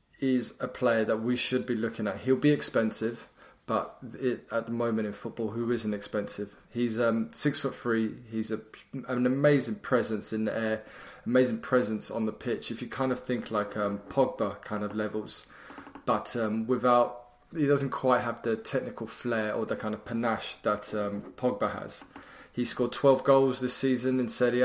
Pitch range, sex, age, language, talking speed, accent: 110-125 Hz, male, 20-39, English, 185 wpm, British